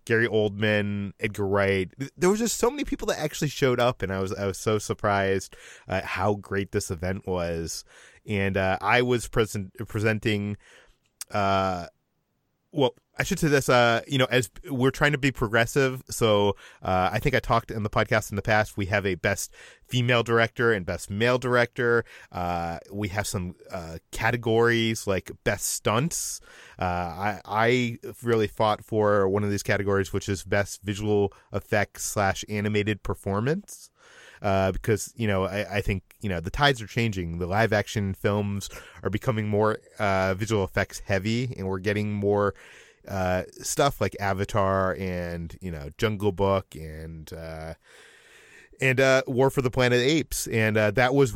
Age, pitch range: 30-49, 95-115 Hz